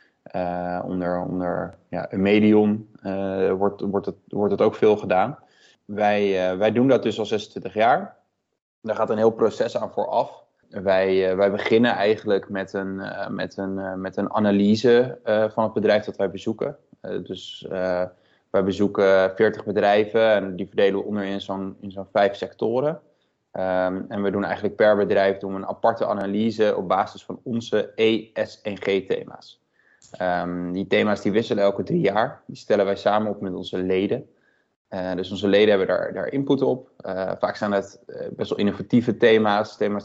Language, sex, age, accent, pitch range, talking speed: Dutch, male, 20-39, Dutch, 95-105 Hz, 180 wpm